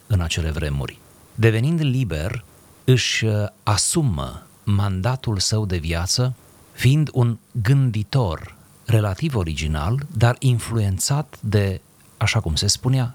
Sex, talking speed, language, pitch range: male, 105 wpm, Romanian, 90-120 Hz